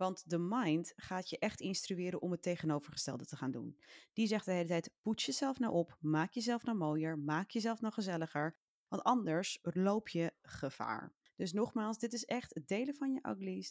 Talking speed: 195 wpm